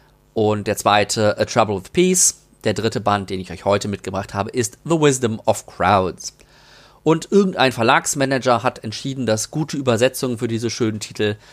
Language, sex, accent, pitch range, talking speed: German, male, German, 105-135 Hz, 170 wpm